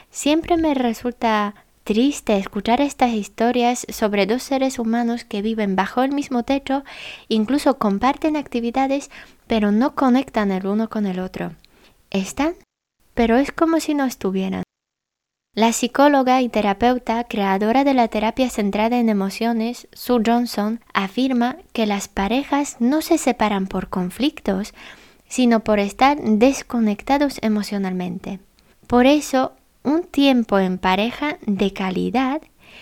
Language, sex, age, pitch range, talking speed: Spanish, female, 20-39, 205-260 Hz, 130 wpm